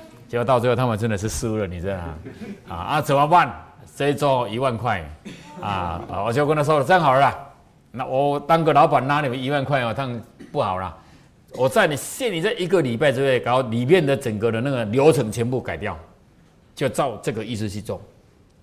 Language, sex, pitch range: Chinese, male, 100-140 Hz